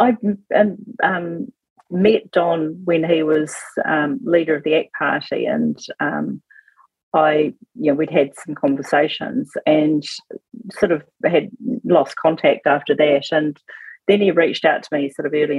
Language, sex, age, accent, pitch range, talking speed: English, female, 40-59, Australian, 145-185 Hz, 160 wpm